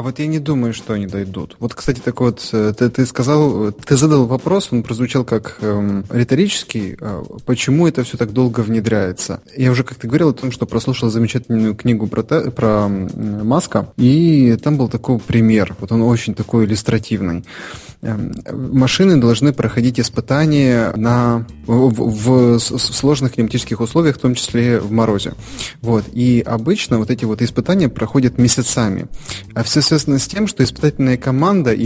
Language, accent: Russian, native